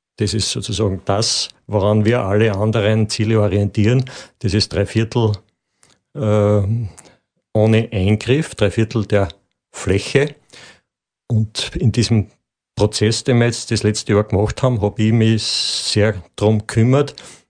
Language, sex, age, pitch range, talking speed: German, male, 50-69, 100-110 Hz, 135 wpm